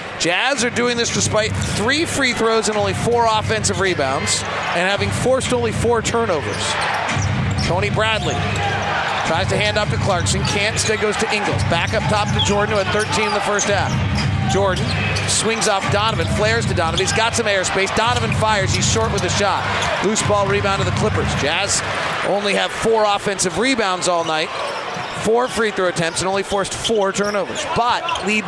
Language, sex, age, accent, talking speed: English, male, 40-59, American, 180 wpm